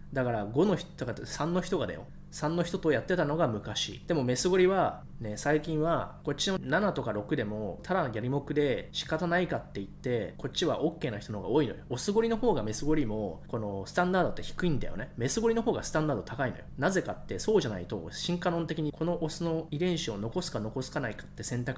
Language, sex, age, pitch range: Japanese, male, 20-39, 110-170 Hz